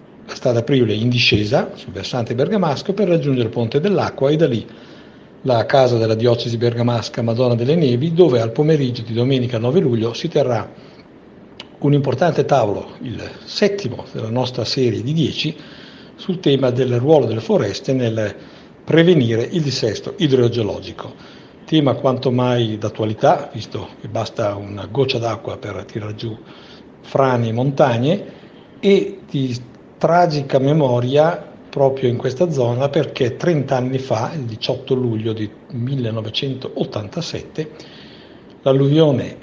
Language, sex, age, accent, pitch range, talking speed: Italian, male, 60-79, native, 115-145 Hz, 135 wpm